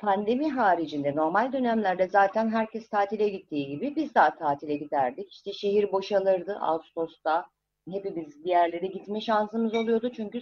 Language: Turkish